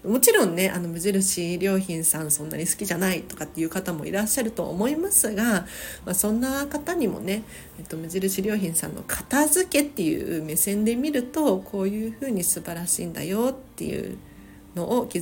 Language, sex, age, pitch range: Japanese, female, 40-59, 180-255 Hz